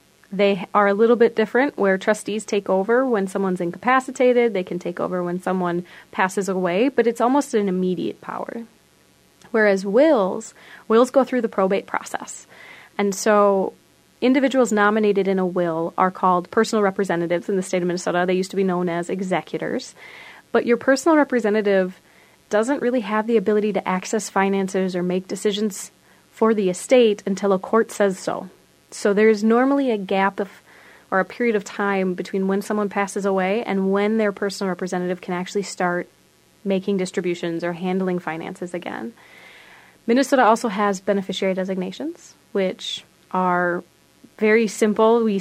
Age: 30-49